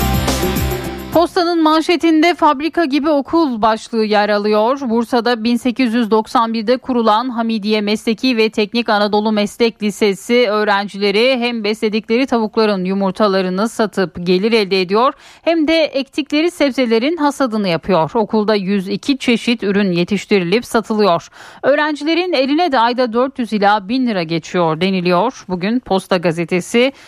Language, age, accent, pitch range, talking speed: Turkish, 10-29, native, 200-260 Hz, 115 wpm